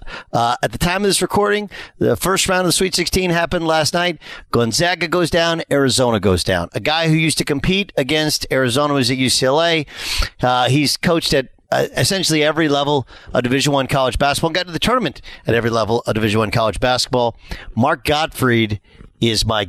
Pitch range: 115-160 Hz